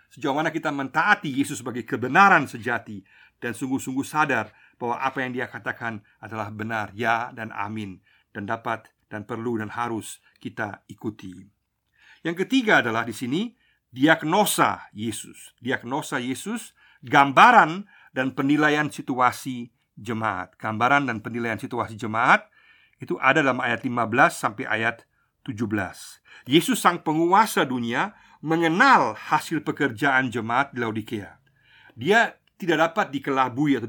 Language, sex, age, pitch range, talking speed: Indonesian, male, 50-69, 120-170 Hz, 125 wpm